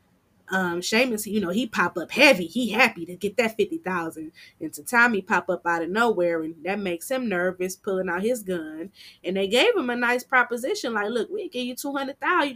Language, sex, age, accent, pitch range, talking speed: English, female, 20-39, American, 180-245 Hz, 210 wpm